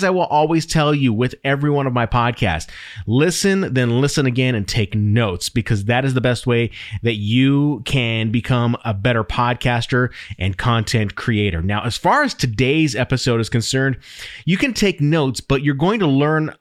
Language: English